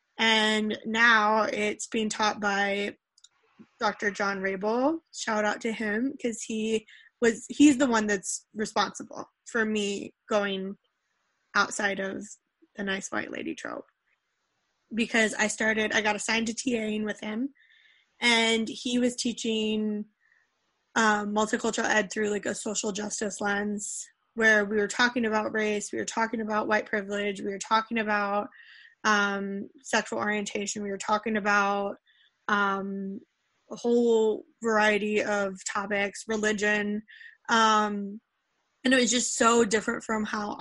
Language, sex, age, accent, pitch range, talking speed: English, female, 10-29, American, 210-235 Hz, 135 wpm